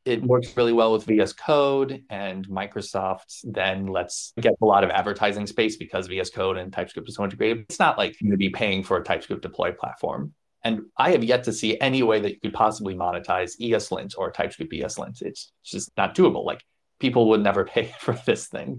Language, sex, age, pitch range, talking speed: English, male, 30-49, 105-140 Hz, 215 wpm